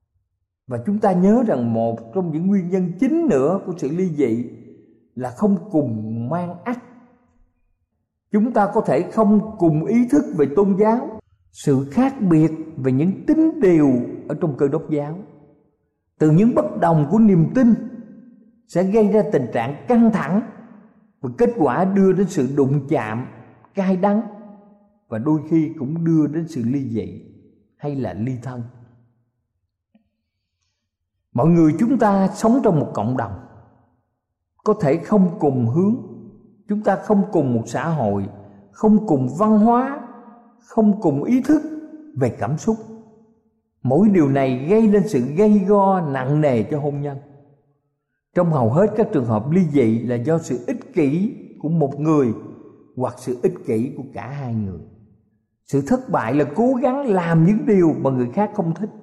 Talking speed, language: 165 wpm, Vietnamese